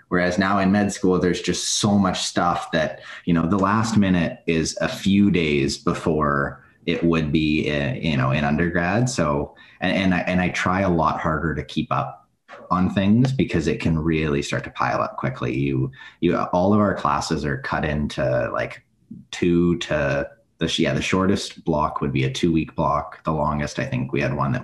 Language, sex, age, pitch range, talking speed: English, male, 30-49, 75-90 Hz, 205 wpm